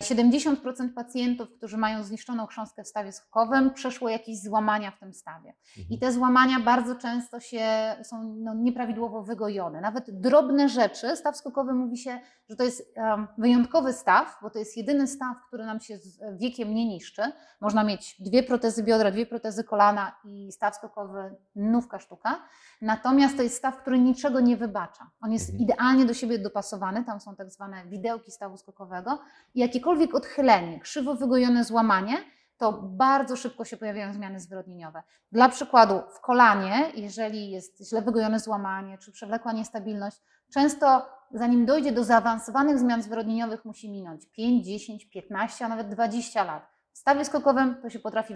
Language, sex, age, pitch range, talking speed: Polish, female, 30-49, 205-250 Hz, 160 wpm